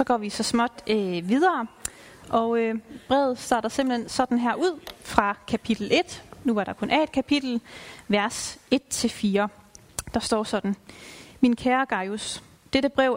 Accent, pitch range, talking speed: native, 205-245 Hz, 160 wpm